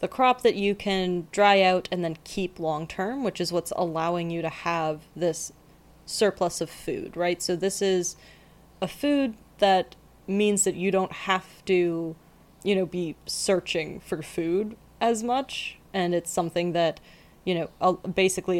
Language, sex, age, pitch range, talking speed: English, female, 20-39, 170-200 Hz, 165 wpm